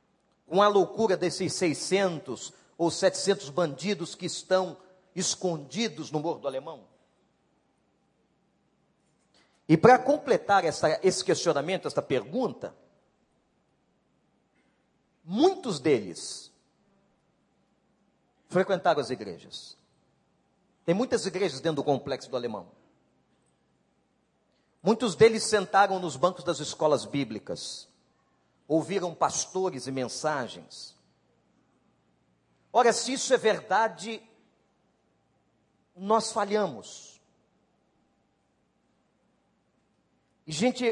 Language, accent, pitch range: Portuguese, Brazilian, 170-225 Hz